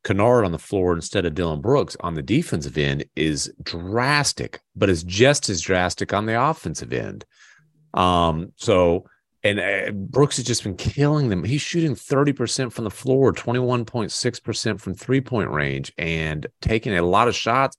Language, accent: English, American